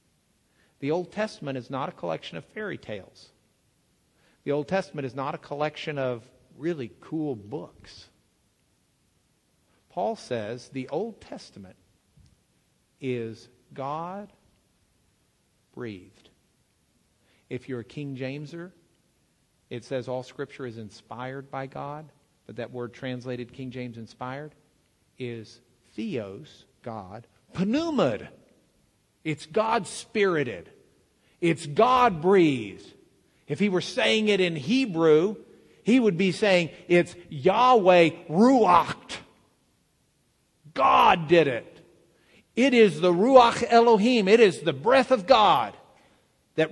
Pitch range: 125-185 Hz